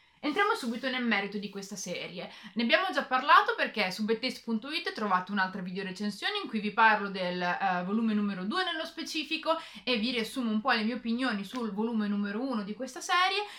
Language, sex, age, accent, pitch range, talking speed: Italian, female, 30-49, native, 200-275 Hz, 190 wpm